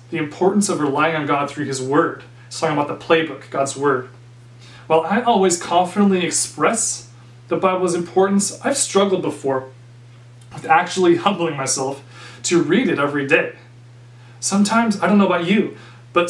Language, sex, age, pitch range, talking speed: English, male, 30-49, 120-175 Hz, 160 wpm